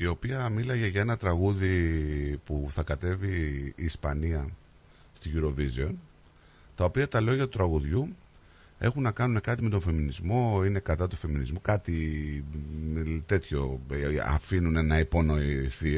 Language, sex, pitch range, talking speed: Greek, male, 80-115 Hz, 130 wpm